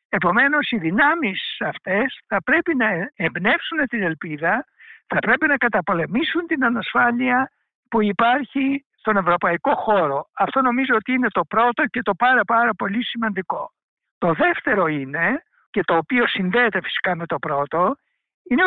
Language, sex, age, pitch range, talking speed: Greek, male, 60-79, 195-265 Hz, 145 wpm